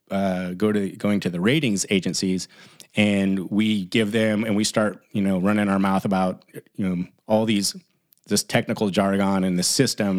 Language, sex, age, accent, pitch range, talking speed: English, male, 30-49, American, 95-115 Hz, 185 wpm